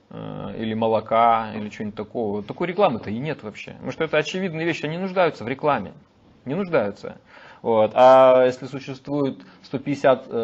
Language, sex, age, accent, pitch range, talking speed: Russian, male, 30-49, native, 120-160 Hz, 150 wpm